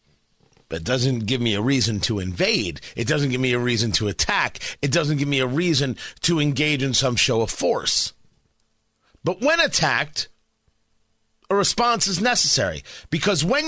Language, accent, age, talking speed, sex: English, American, 40-59, 170 wpm, male